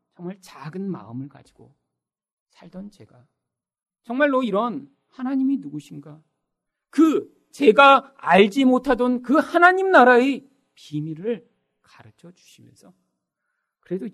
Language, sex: Korean, male